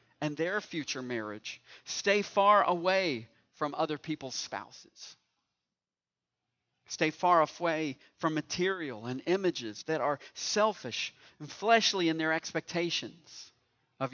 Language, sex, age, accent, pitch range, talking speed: English, male, 50-69, American, 120-165 Hz, 115 wpm